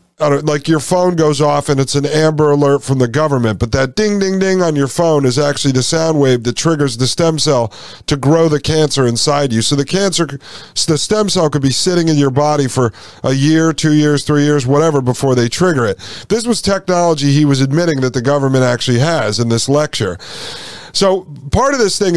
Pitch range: 130-165 Hz